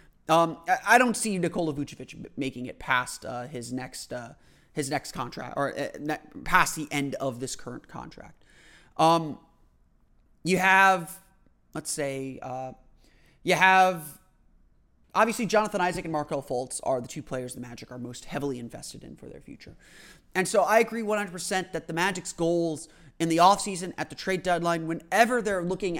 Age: 30-49